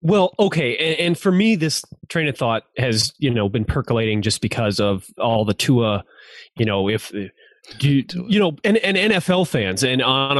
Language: English